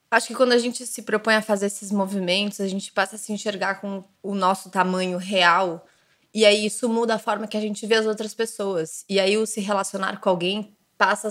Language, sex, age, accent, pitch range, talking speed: Portuguese, female, 20-39, Brazilian, 190-235 Hz, 230 wpm